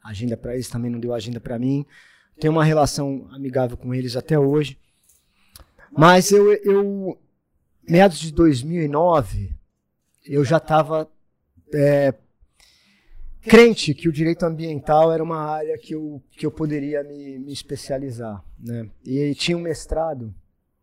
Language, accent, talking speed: Portuguese, Brazilian, 140 wpm